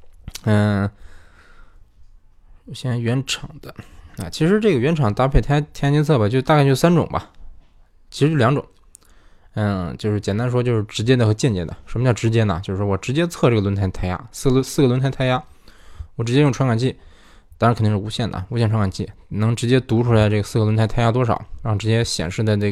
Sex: male